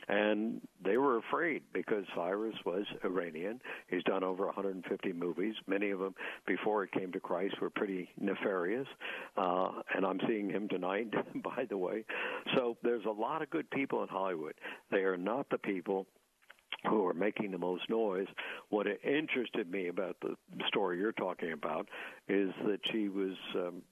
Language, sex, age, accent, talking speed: English, male, 60-79, American, 170 wpm